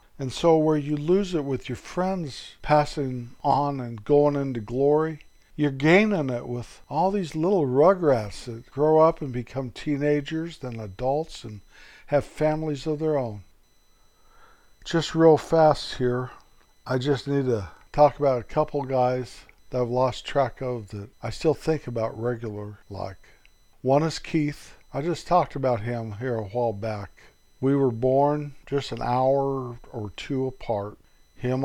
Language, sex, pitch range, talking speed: English, male, 115-150 Hz, 160 wpm